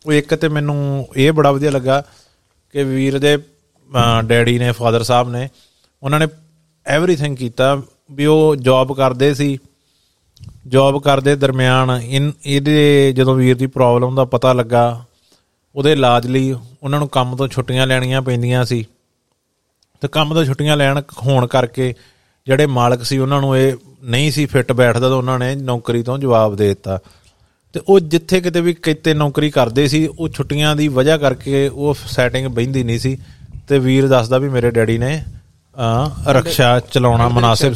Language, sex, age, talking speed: Punjabi, male, 30-49, 165 wpm